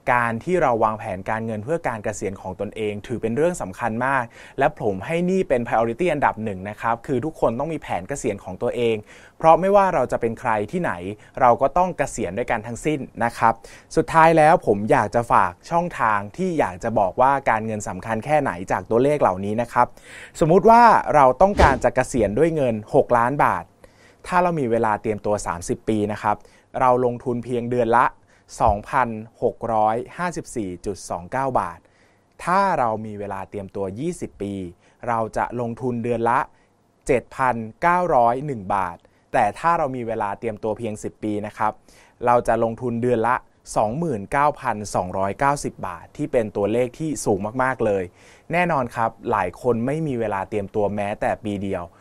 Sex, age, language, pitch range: male, 20-39, Thai, 105-140 Hz